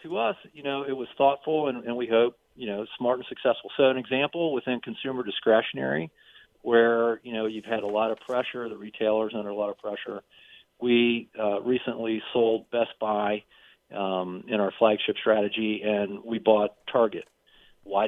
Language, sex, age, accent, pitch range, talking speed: English, male, 40-59, American, 105-125 Hz, 180 wpm